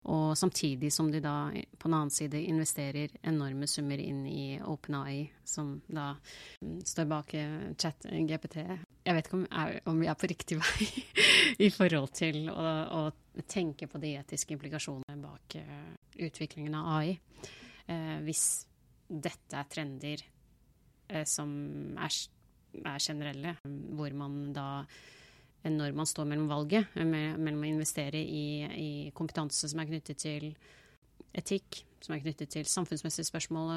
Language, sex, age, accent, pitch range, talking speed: English, female, 30-49, Swedish, 145-160 Hz, 145 wpm